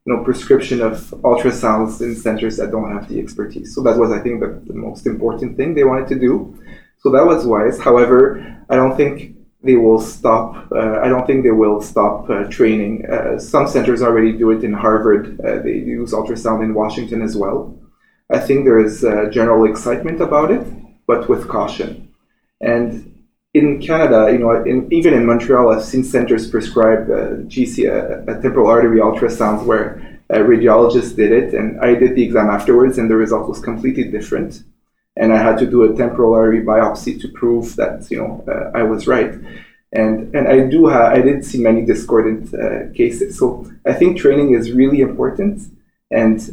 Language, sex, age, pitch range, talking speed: English, male, 20-39, 110-130 Hz, 190 wpm